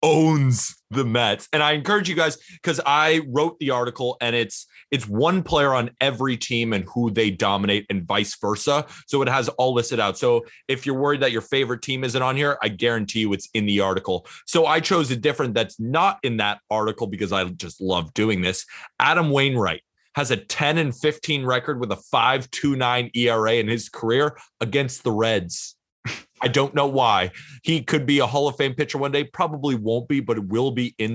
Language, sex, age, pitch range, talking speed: English, male, 30-49, 110-145 Hz, 210 wpm